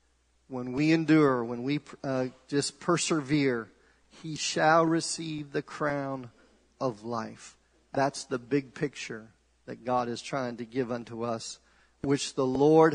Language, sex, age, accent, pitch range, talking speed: English, male, 40-59, American, 125-150 Hz, 140 wpm